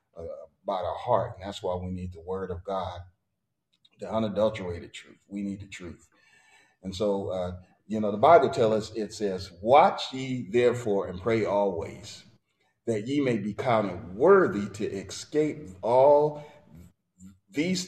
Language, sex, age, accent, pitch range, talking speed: English, male, 40-59, American, 95-115 Hz, 160 wpm